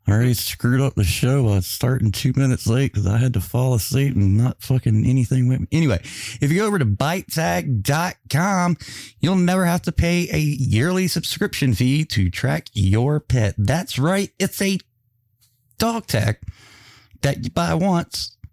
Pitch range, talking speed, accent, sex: 105-140 Hz, 180 wpm, American, male